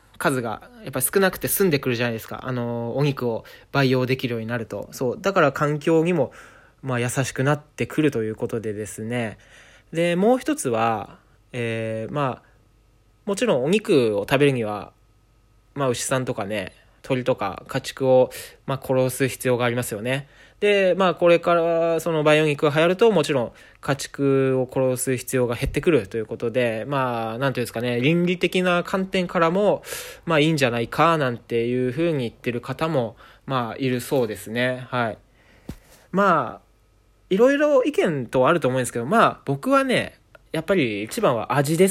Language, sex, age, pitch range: Japanese, male, 20-39, 115-165 Hz